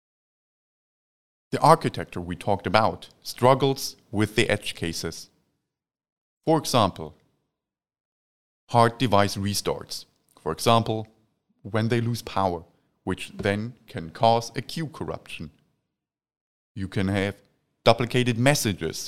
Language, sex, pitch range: English, male, 95-130 Hz